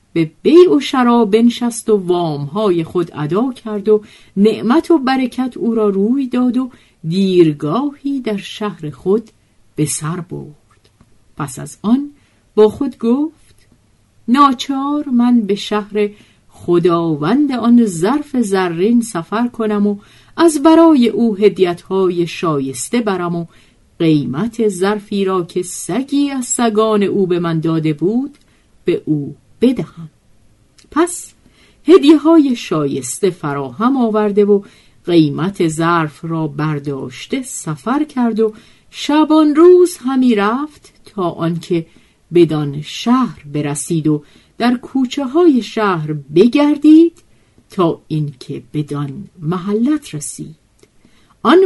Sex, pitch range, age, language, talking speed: female, 160-250 Hz, 50-69, Persian, 115 wpm